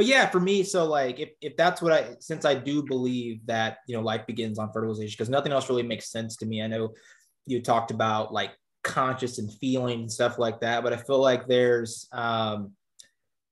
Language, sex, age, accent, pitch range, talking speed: English, male, 20-39, American, 110-130 Hz, 220 wpm